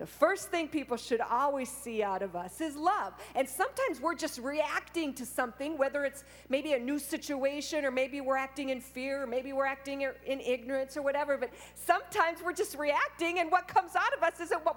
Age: 50-69